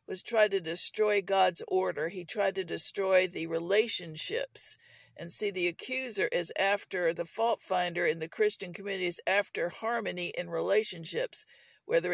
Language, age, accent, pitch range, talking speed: English, 50-69, American, 180-235 Hz, 155 wpm